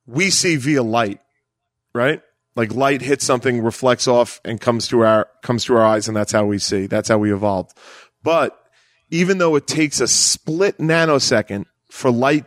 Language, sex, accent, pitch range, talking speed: English, male, American, 115-155 Hz, 185 wpm